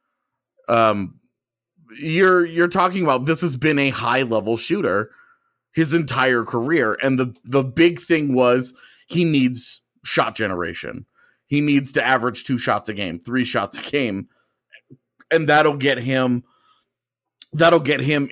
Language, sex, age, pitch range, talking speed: English, male, 30-49, 125-165 Hz, 145 wpm